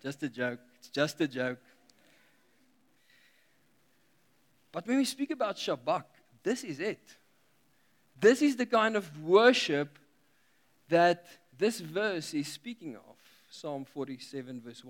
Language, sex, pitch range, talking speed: English, male, 135-170 Hz, 125 wpm